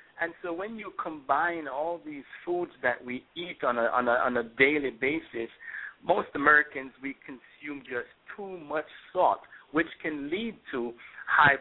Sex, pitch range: male, 125-165 Hz